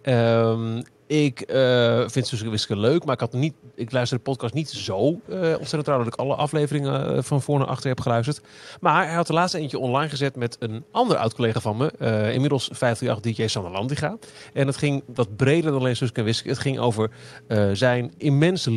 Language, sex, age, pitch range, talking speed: Dutch, male, 40-59, 115-145 Hz, 210 wpm